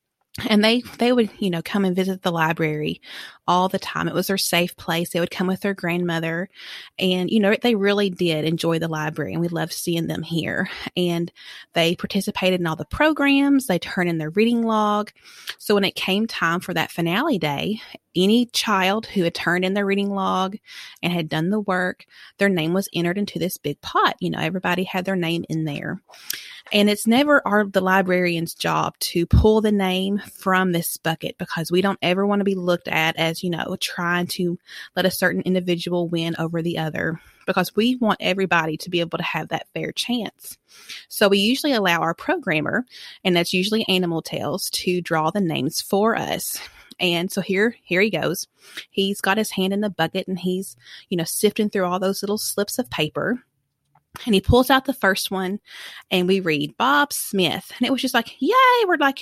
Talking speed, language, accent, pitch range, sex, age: 205 wpm, English, American, 170-210 Hz, female, 30-49